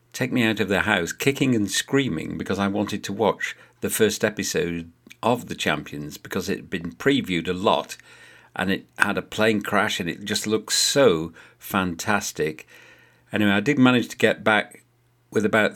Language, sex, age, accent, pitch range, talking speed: English, male, 50-69, British, 100-125 Hz, 185 wpm